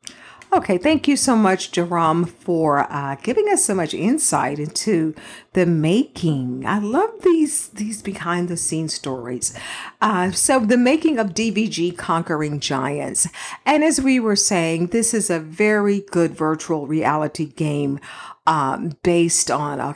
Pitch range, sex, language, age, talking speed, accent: 155-215 Hz, female, English, 50-69, 140 wpm, American